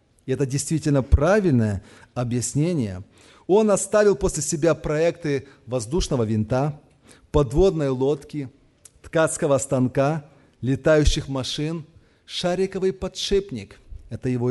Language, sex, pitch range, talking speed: Russian, male, 140-195 Hz, 90 wpm